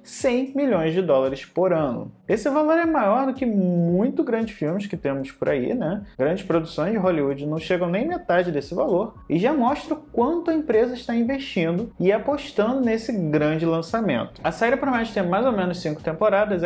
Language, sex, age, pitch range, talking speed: Portuguese, male, 20-39, 165-245 Hz, 185 wpm